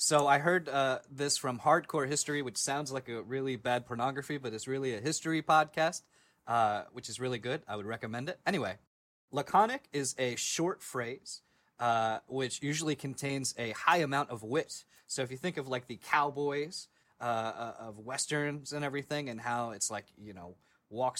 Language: English